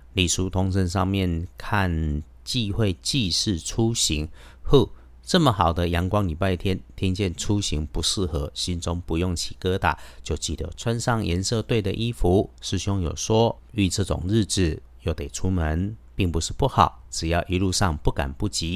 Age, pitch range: 50-69, 80-100 Hz